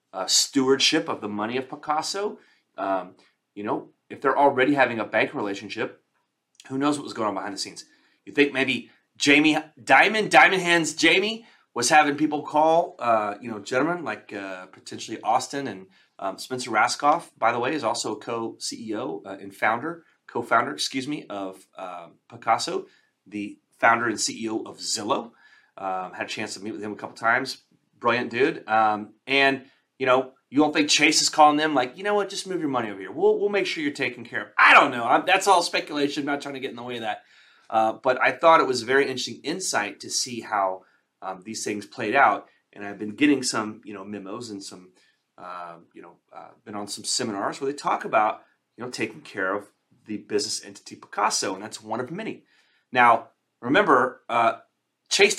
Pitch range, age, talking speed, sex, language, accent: 110-160 Hz, 30-49, 205 wpm, male, English, American